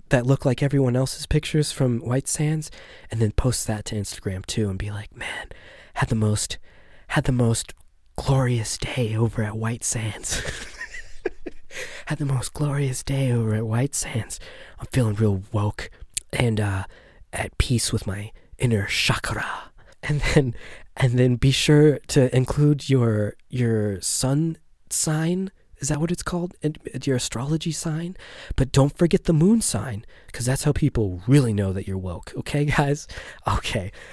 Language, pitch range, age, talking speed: English, 110-150 Hz, 20-39, 160 wpm